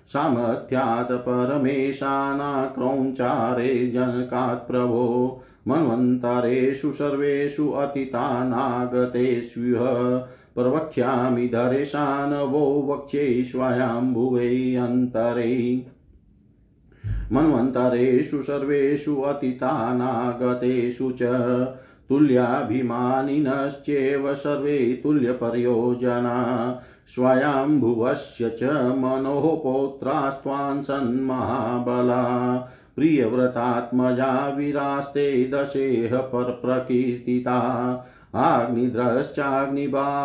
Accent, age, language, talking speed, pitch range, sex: native, 50-69, Hindi, 35 wpm, 125-140 Hz, male